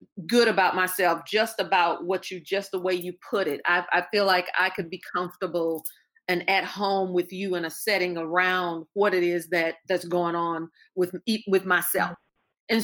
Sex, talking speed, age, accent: female, 195 wpm, 40-59, American